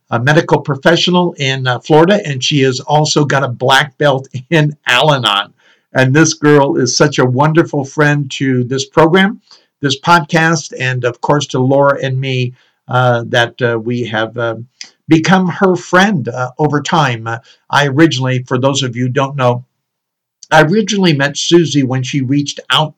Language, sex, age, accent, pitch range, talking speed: English, male, 60-79, American, 130-160 Hz, 170 wpm